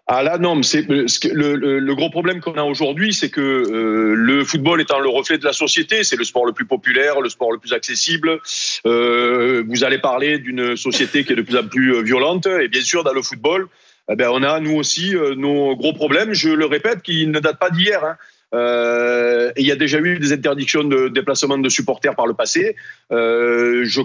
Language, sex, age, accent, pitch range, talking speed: French, male, 40-59, French, 140-175 Hz, 220 wpm